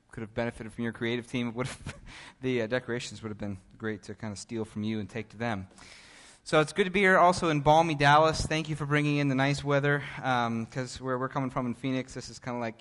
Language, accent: English, American